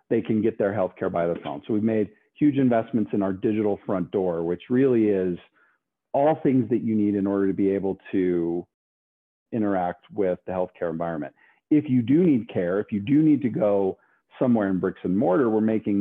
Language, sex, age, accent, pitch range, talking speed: English, male, 40-59, American, 95-120 Hz, 205 wpm